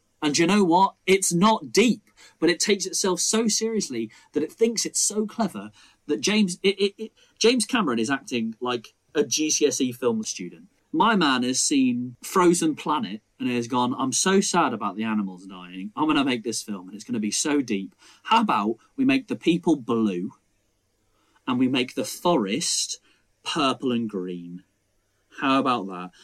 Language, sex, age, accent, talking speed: English, male, 30-49, British, 185 wpm